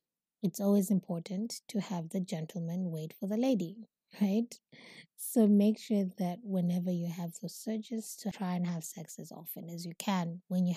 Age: 20-39